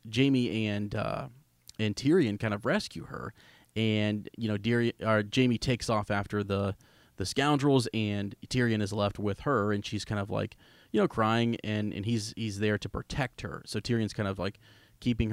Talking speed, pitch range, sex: 190 wpm, 105-115 Hz, male